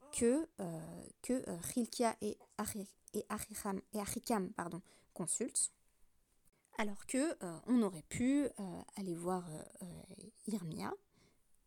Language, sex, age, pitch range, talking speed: French, female, 20-39, 190-235 Hz, 115 wpm